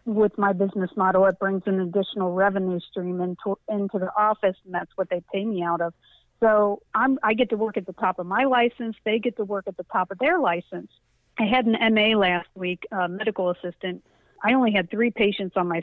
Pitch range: 185-220 Hz